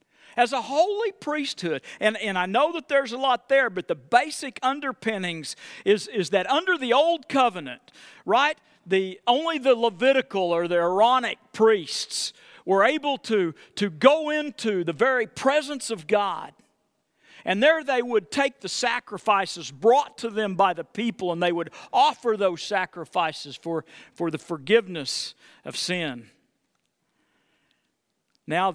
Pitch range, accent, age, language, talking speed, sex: 190-290 Hz, American, 50-69, English, 145 wpm, male